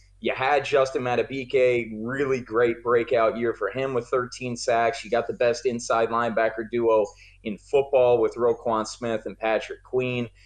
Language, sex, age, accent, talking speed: English, male, 30-49, American, 160 wpm